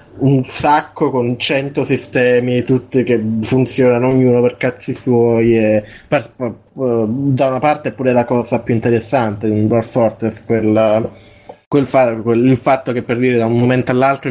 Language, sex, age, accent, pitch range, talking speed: Italian, male, 20-39, native, 115-135 Hz, 175 wpm